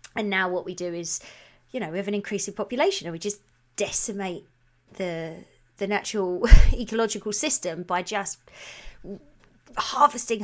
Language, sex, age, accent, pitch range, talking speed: English, female, 20-39, British, 175-225 Hz, 150 wpm